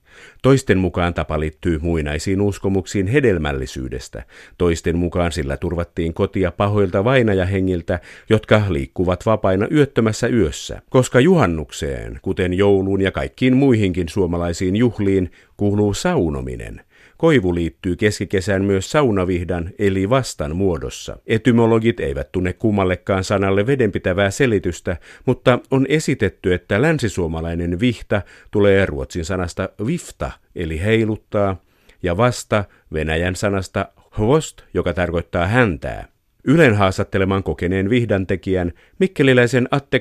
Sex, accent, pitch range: male, native, 90-115 Hz